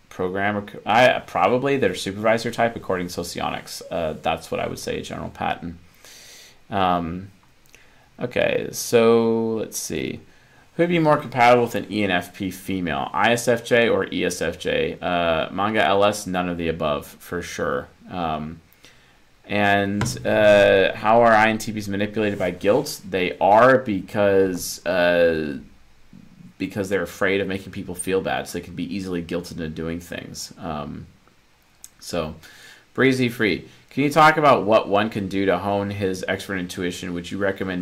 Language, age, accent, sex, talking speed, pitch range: English, 30-49, American, male, 150 wpm, 90-110 Hz